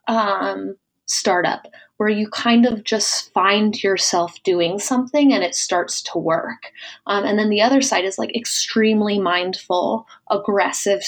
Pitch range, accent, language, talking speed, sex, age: 190-230 Hz, American, English, 145 wpm, female, 20-39